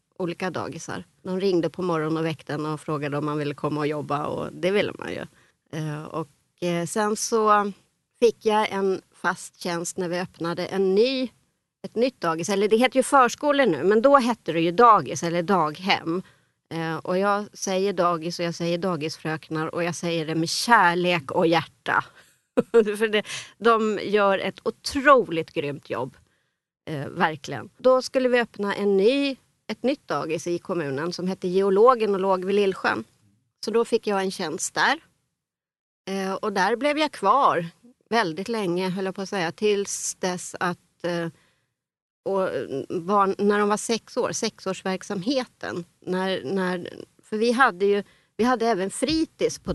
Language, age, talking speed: Swedish, 30-49, 160 wpm